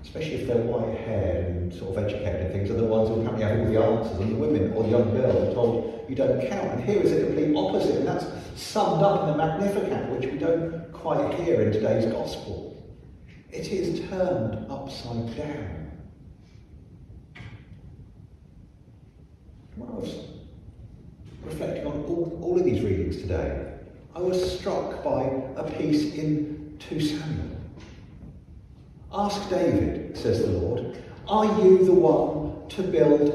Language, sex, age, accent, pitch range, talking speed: English, male, 40-59, British, 105-170 Hz, 160 wpm